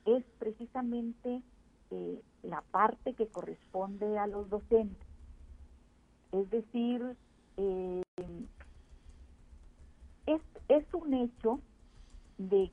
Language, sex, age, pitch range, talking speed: Spanish, female, 50-69, 180-245 Hz, 85 wpm